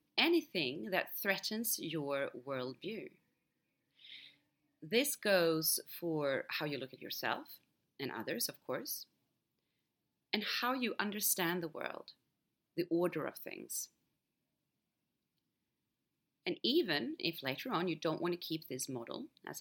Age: 30-49